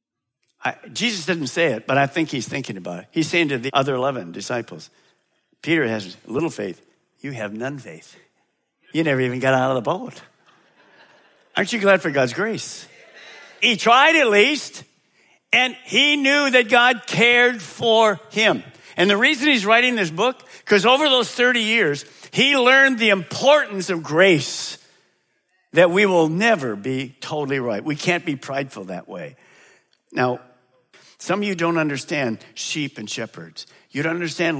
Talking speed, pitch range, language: 165 wpm, 130-215 Hz, English